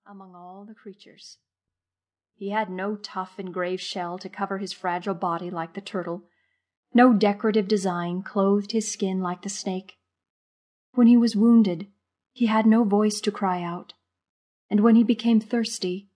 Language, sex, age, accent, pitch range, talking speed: English, female, 30-49, American, 175-225 Hz, 165 wpm